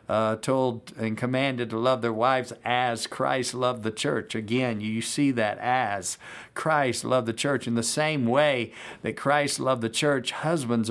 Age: 50-69